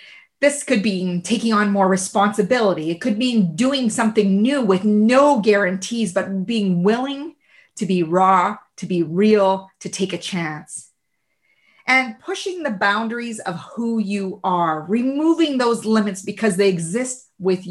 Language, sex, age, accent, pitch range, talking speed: English, female, 30-49, American, 190-245 Hz, 150 wpm